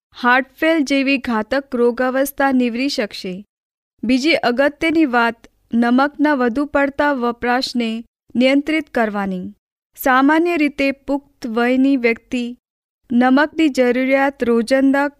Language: Hindi